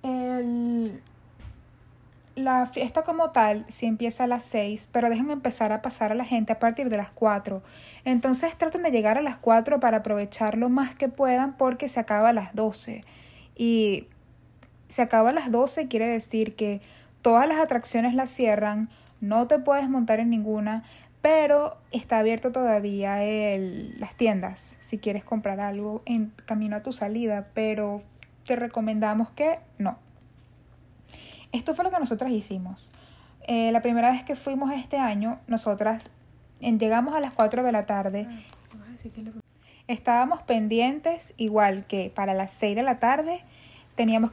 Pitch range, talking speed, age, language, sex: 210-250 Hz, 160 wpm, 10-29, Spanish, female